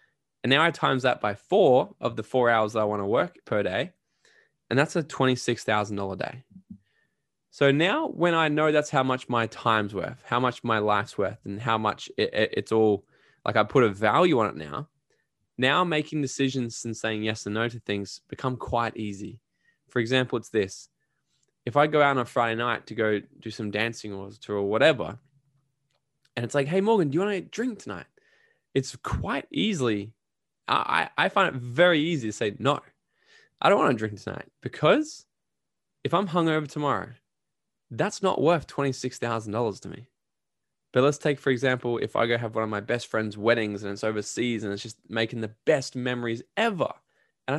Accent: Australian